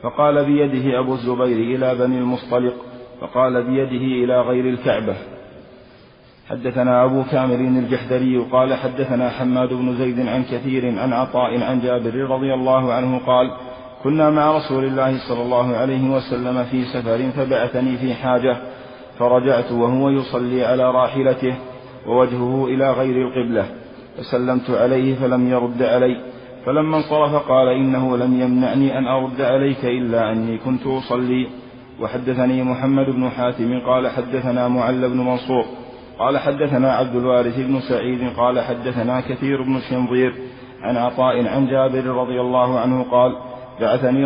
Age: 40-59